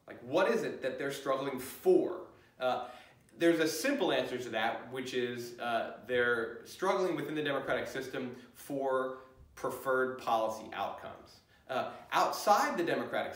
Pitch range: 115-145 Hz